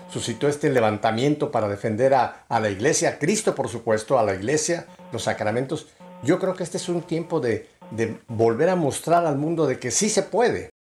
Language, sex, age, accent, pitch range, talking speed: Spanish, male, 50-69, Mexican, 125-160 Hz, 205 wpm